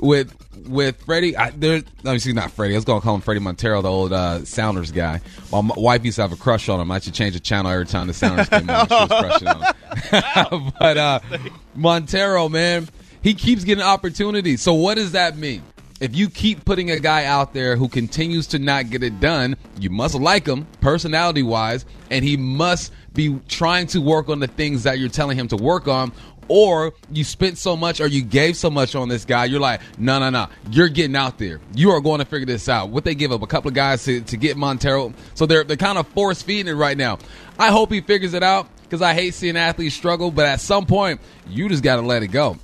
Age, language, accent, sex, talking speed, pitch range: 30-49, English, American, male, 235 wpm, 120-170 Hz